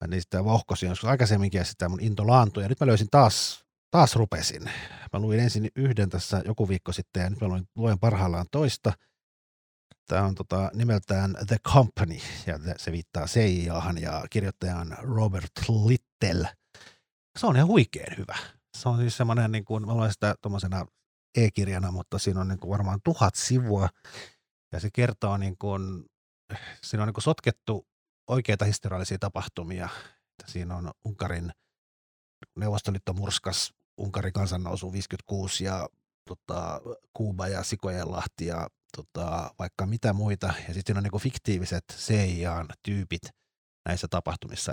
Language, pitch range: Finnish, 90-110 Hz